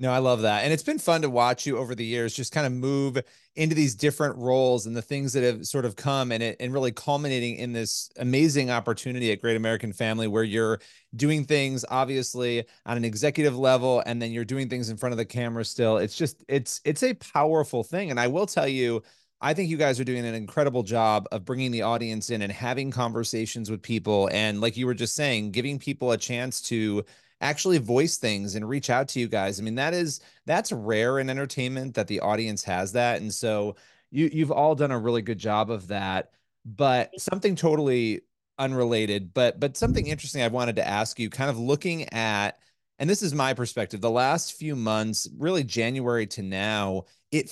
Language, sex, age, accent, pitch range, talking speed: English, male, 30-49, American, 115-140 Hz, 215 wpm